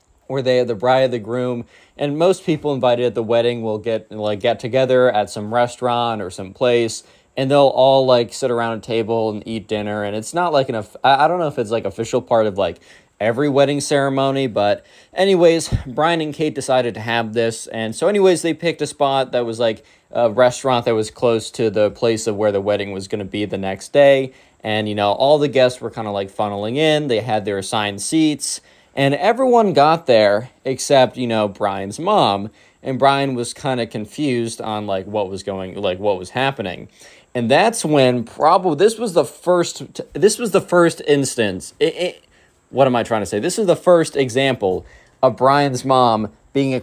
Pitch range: 110-140 Hz